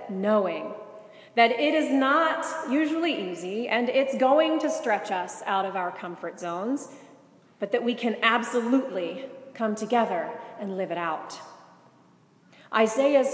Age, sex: 30-49, female